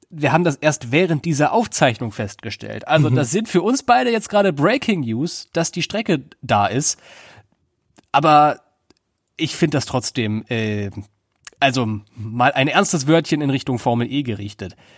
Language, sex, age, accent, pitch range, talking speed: German, male, 30-49, German, 120-165 Hz, 155 wpm